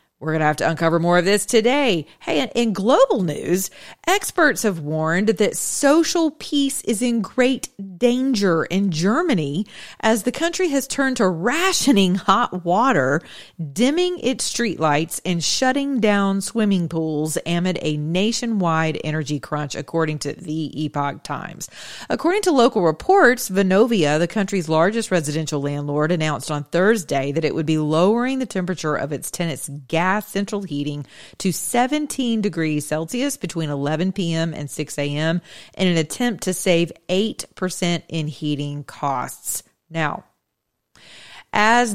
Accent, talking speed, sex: American, 145 wpm, female